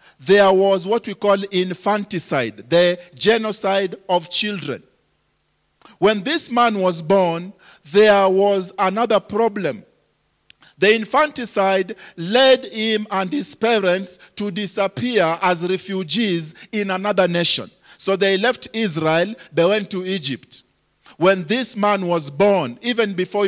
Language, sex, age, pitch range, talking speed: English, male, 40-59, 185-230 Hz, 125 wpm